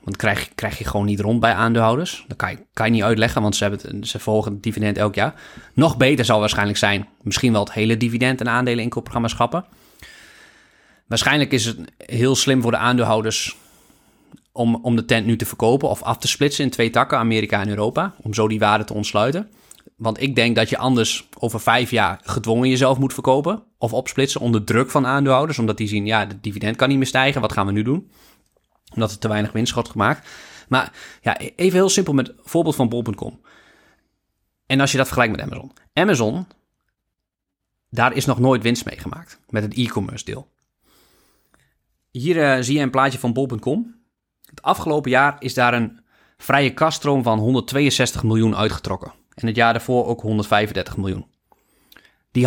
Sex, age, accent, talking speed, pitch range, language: male, 20-39, Dutch, 190 wpm, 110-135 Hz, Dutch